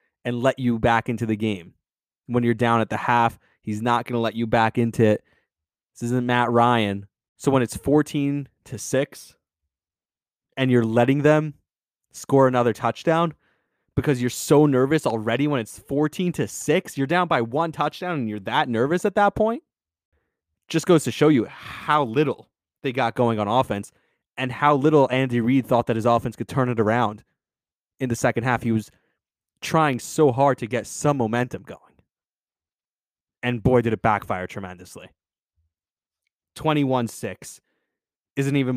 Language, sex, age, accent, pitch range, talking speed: English, male, 20-39, American, 110-135 Hz, 165 wpm